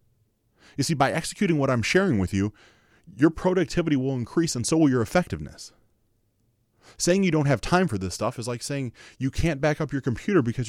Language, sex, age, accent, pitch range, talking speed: English, male, 30-49, American, 110-145 Hz, 200 wpm